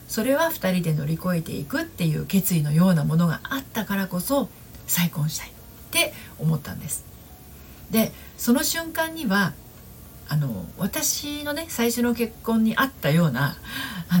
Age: 50-69